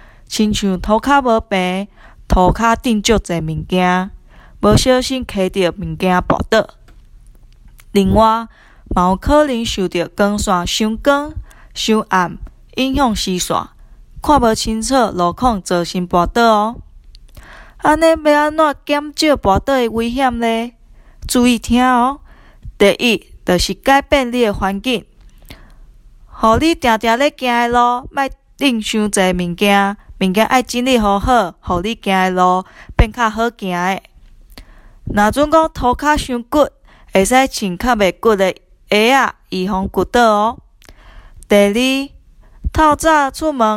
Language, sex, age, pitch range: Chinese, female, 20-39, 190-255 Hz